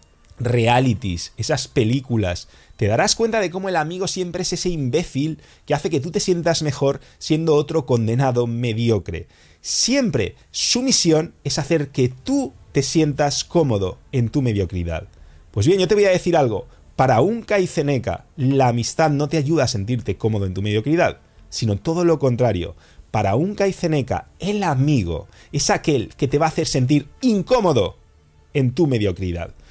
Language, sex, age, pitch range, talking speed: English, male, 30-49, 115-170 Hz, 165 wpm